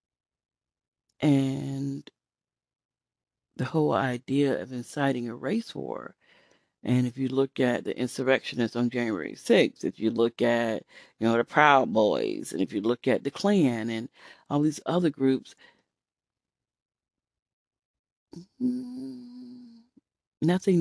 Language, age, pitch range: English, 40-59, 120-155 Hz